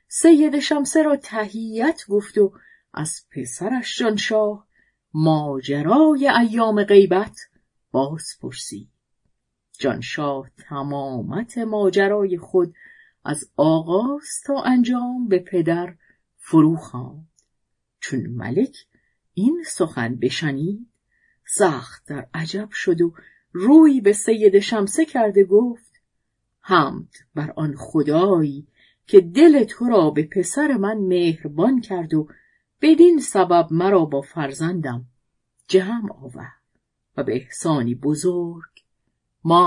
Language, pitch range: Persian, 150-230 Hz